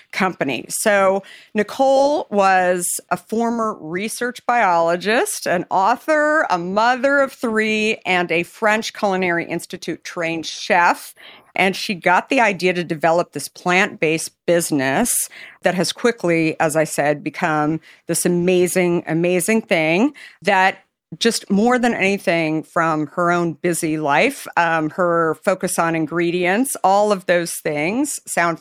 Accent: American